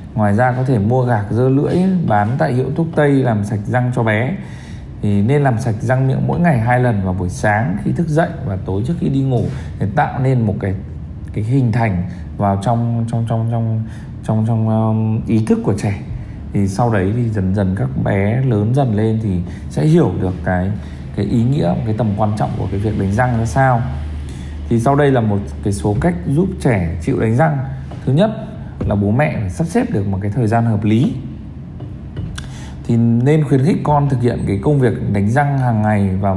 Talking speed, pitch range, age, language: 220 wpm, 100-135 Hz, 20-39, Vietnamese